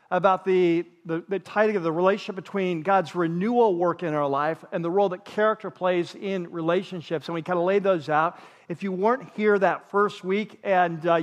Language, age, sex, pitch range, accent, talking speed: English, 40-59, male, 180-215 Hz, American, 210 wpm